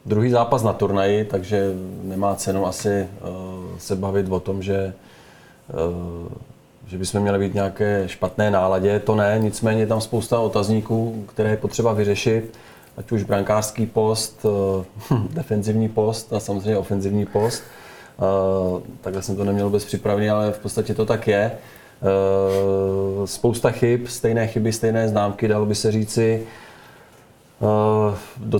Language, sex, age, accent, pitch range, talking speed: Czech, male, 30-49, native, 100-110 Hz, 135 wpm